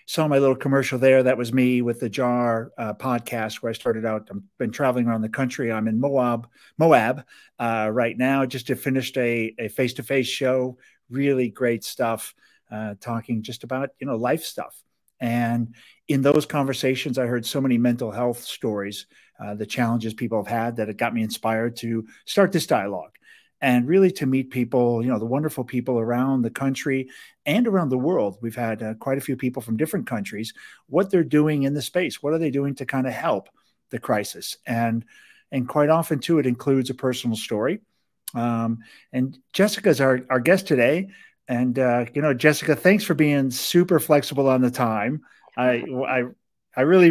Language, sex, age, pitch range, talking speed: English, male, 50-69, 120-145 Hz, 195 wpm